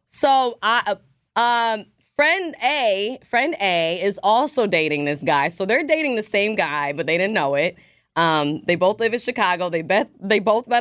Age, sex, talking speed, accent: 20-39, female, 195 wpm, American